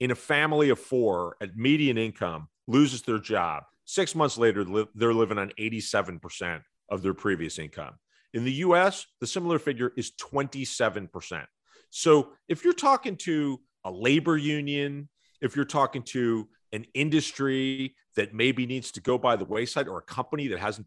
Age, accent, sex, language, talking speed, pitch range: 40-59, American, male, English, 165 wpm, 110-150 Hz